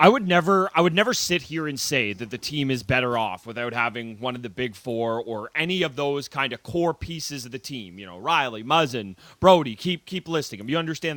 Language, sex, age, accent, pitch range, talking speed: English, male, 30-49, American, 125-170 Hz, 255 wpm